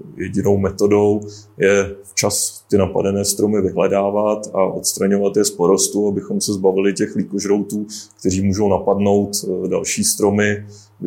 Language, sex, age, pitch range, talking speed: Czech, male, 20-39, 95-105 Hz, 130 wpm